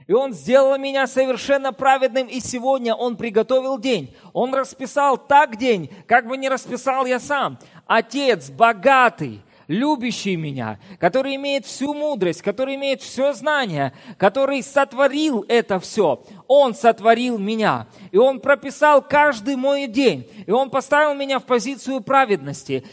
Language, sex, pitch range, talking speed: Russian, male, 210-275 Hz, 140 wpm